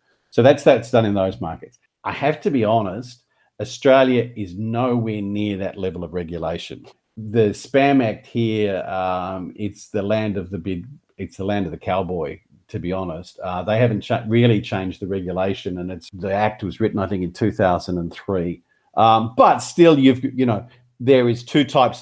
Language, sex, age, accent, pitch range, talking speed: English, male, 50-69, Australian, 95-115 Hz, 195 wpm